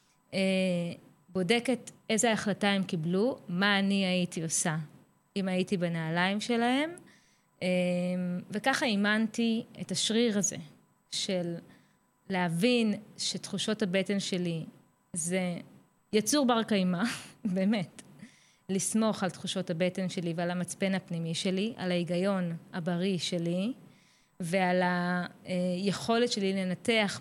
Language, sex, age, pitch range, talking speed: Hebrew, female, 20-39, 180-220 Hz, 100 wpm